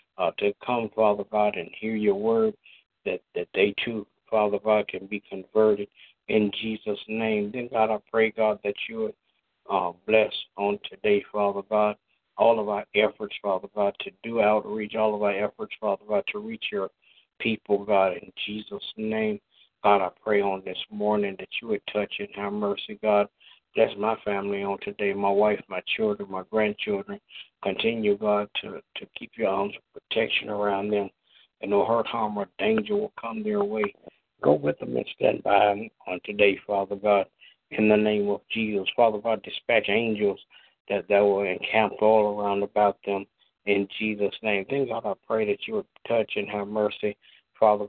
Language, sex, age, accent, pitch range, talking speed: English, male, 60-79, American, 100-115 Hz, 185 wpm